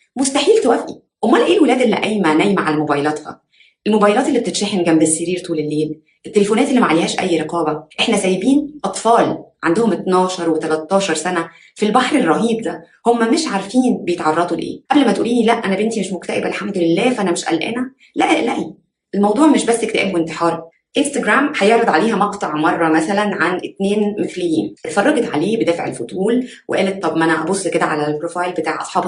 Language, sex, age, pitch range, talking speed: Arabic, female, 20-39, 170-225 Hz, 170 wpm